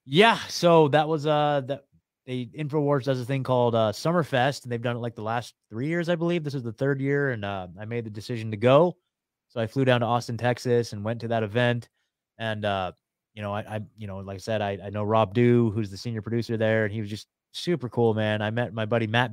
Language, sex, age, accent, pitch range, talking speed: English, male, 20-39, American, 105-140 Hz, 260 wpm